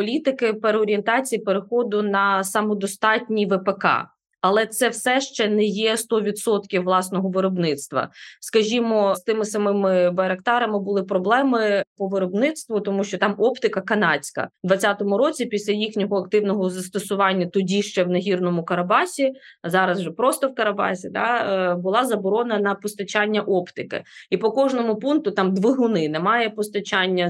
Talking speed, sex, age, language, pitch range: 135 wpm, female, 20-39, Ukrainian, 190-225 Hz